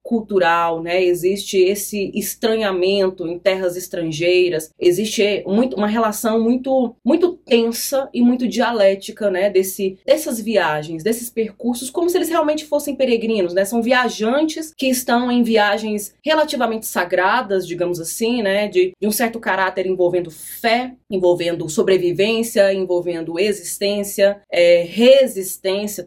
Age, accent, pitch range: 20-39, Brazilian, 185-240 Hz